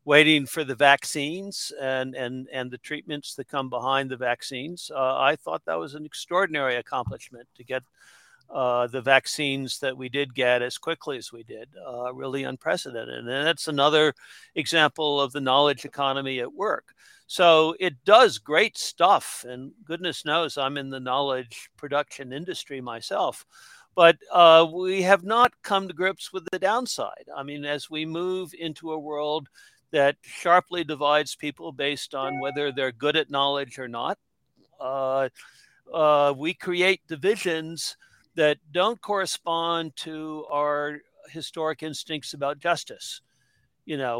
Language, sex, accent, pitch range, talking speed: English, male, American, 135-165 Hz, 150 wpm